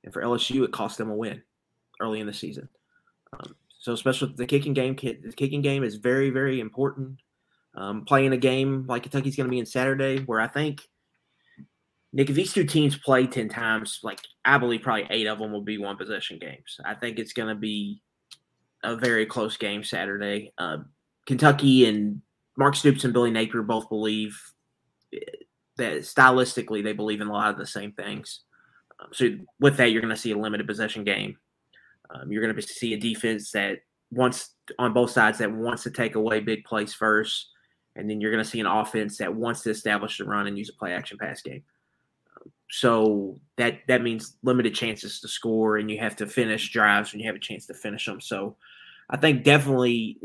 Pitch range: 110-130 Hz